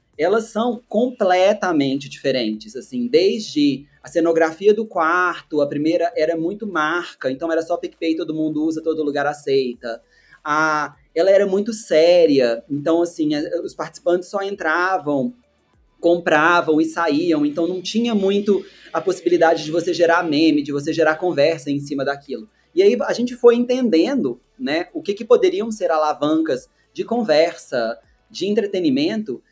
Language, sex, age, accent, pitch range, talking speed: Portuguese, male, 20-39, Brazilian, 150-220 Hz, 145 wpm